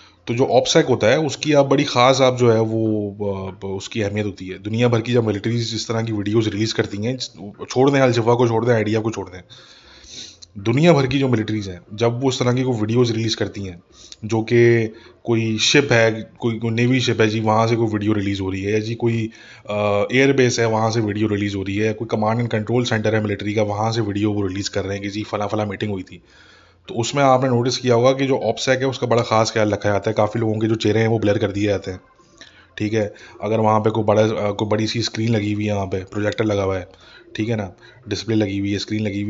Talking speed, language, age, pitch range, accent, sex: 175 wpm, English, 20-39, 105-120 Hz, Indian, male